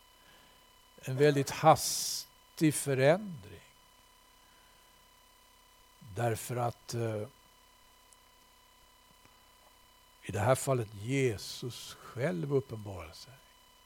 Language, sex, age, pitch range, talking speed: Swedish, male, 60-79, 130-195 Hz, 60 wpm